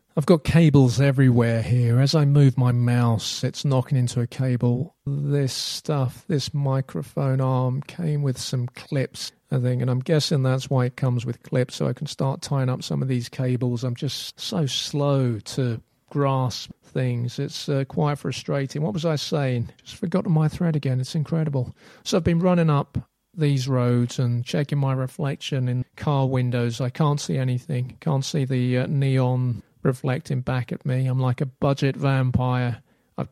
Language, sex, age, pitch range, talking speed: English, male, 40-59, 125-150 Hz, 180 wpm